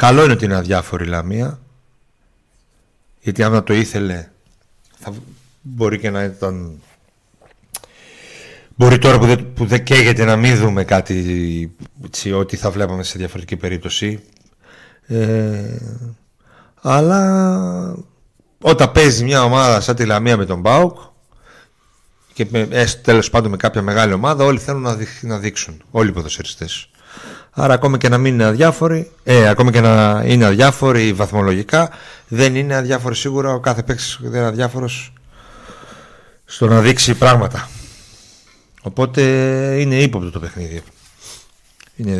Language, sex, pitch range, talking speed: Greek, male, 100-130 Hz, 130 wpm